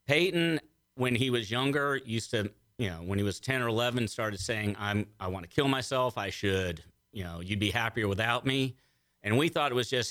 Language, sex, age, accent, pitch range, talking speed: English, male, 50-69, American, 100-120 Hz, 225 wpm